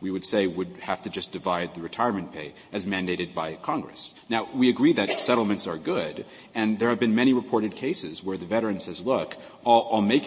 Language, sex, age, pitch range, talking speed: English, male, 40-59, 95-125 Hz, 215 wpm